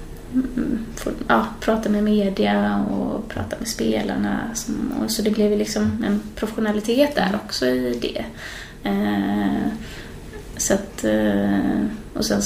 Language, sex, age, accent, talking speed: Swedish, female, 20-39, native, 115 wpm